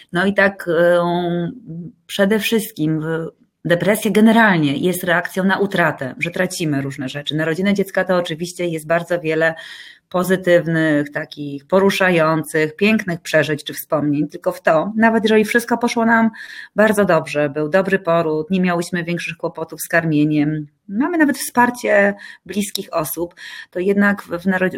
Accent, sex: native, female